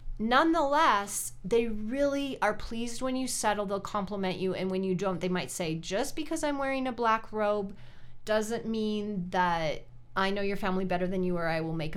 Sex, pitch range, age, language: female, 180-230 Hz, 30-49, English